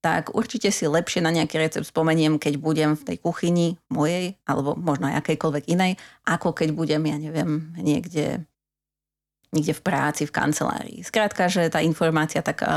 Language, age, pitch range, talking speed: Slovak, 30-49, 155-185 Hz, 160 wpm